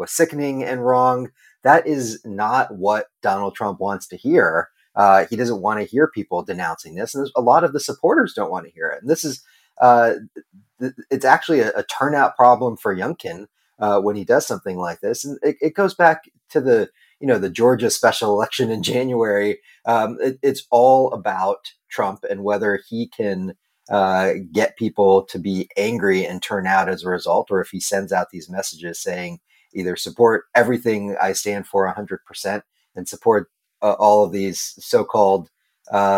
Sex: male